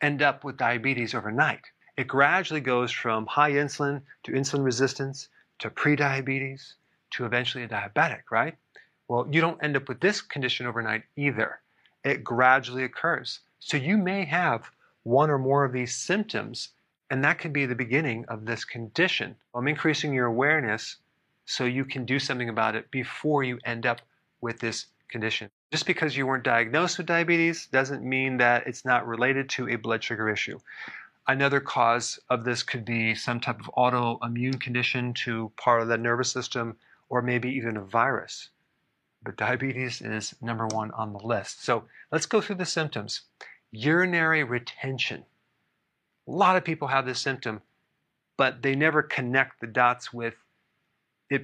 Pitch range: 115-140 Hz